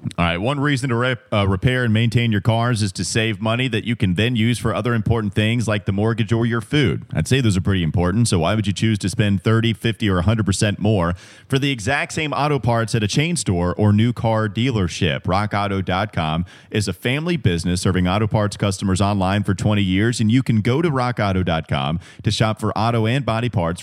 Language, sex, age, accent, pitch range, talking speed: English, male, 30-49, American, 95-120 Hz, 225 wpm